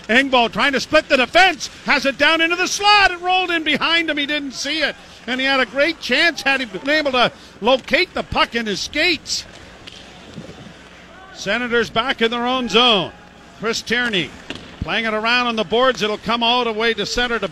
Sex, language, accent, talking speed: male, English, American, 205 wpm